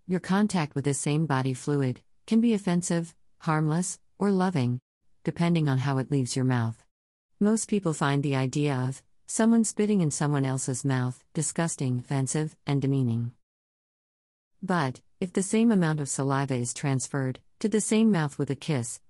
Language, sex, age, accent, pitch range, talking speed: English, female, 50-69, American, 130-170 Hz, 165 wpm